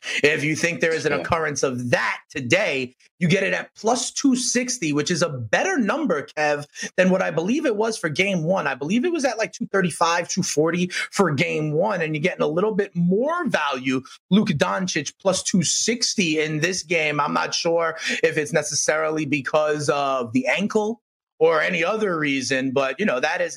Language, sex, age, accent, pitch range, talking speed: English, male, 30-49, American, 155-215 Hz, 195 wpm